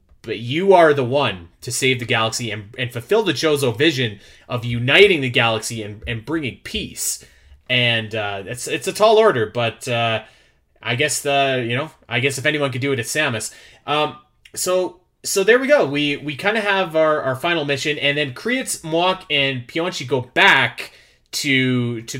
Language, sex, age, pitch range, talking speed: English, male, 30-49, 115-160 Hz, 190 wpm